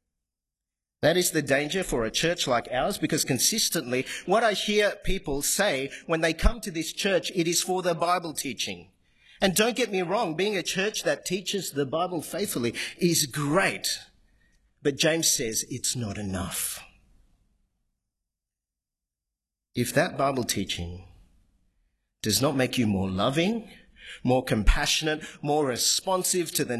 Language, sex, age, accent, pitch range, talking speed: English, male, 50-69, Australian, 105-170 Hz, 145 wpm